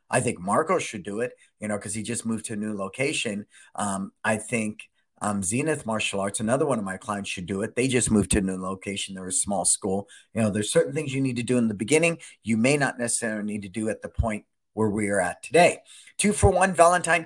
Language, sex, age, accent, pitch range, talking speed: English, male, 50-69, American, 110-145 Hz, 255 wpm